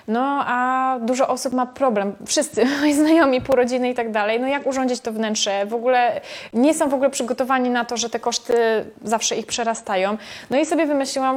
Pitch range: 225-270 Hz